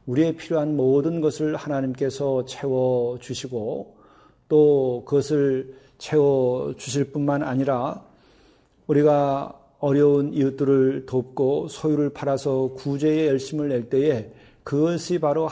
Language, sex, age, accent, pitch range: Korean, male, 40-59, native, 130-145 Hz